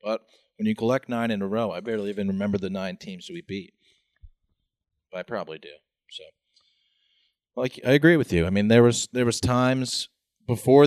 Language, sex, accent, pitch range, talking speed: English, male, American, 95-115 Hz, 195 wpm